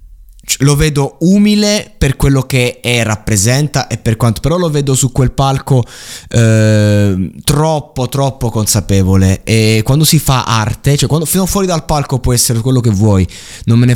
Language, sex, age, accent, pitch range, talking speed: Italian, male, 20-39, native, 110-140 Hz, 170 wpm